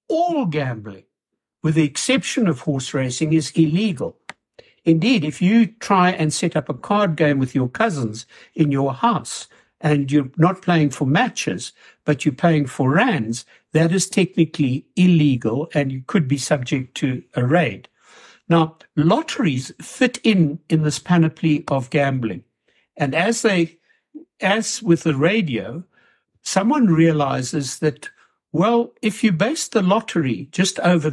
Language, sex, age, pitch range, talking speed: English, male, 60-79, 140-195 Hz, 145 wpm